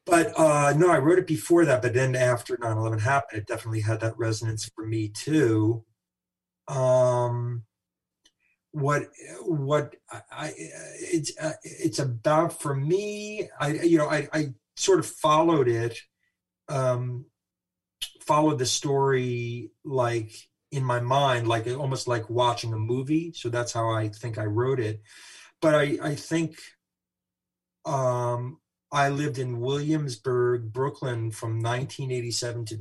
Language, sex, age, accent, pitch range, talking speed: English, male, 40-59, American, 115-140 Hz, 135 wpm